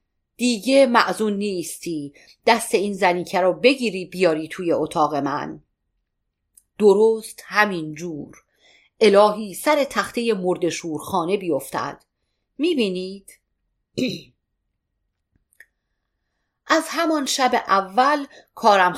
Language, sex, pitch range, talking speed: Persian, female, 175-235 Hz, 85 wpm